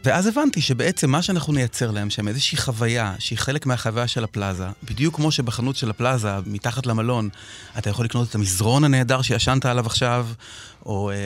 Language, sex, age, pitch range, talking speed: Hebrew, male, 30-49, 110-150 Hz, 170 wpm